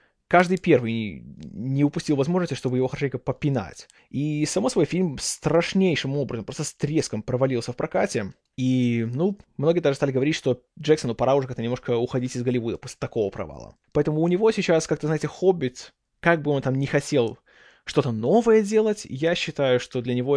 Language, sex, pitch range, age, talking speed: Russian, male, 125-170 Hz, 20-39, 175 wpm